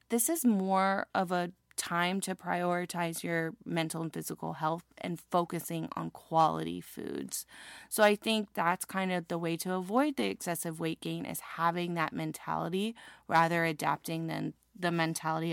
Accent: American